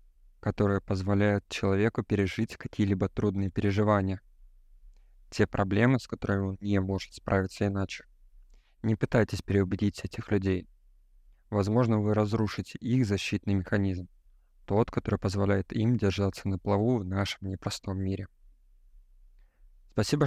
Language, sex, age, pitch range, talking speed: Russian, male, 20-39, 95-110 Hz, 115 wpm